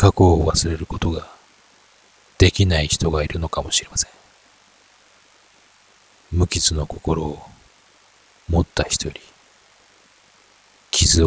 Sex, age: male, 40-59